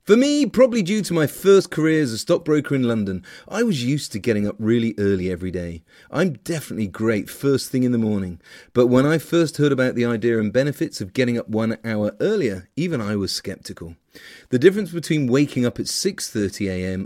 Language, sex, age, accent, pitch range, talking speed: English, male, 30-49, British, 100-145 Hz, 205 wpm